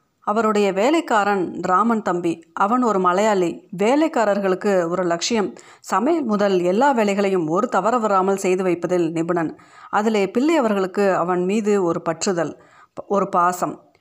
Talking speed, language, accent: 120 wpm, Tamil, native